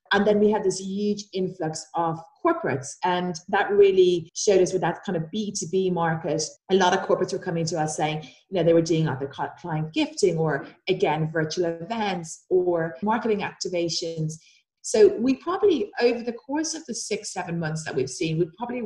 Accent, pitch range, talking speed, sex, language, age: British, 165-210 Hz, 195 wpm, female, English, 30-49